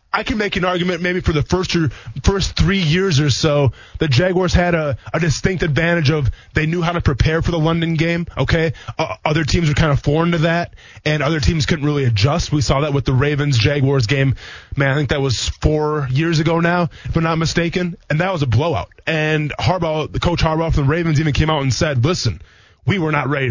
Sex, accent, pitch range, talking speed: male, American, 125-170 Hz, 230 wpm